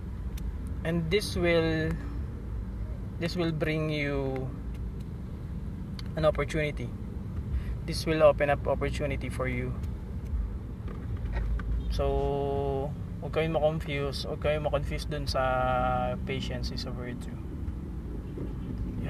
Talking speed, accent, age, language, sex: 95 wpm, native, 20-39, Filipino, male